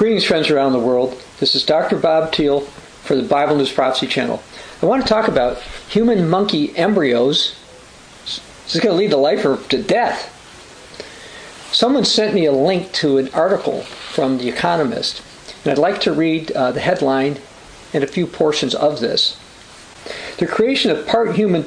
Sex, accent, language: male, American, English